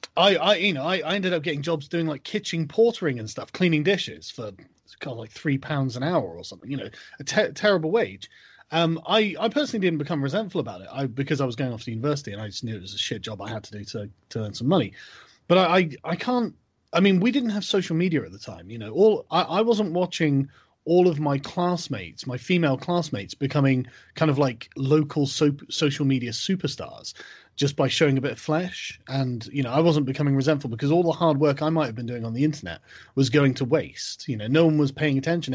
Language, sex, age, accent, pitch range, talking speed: English, male, 30-49, British, 125-175 Hz, 245 wpm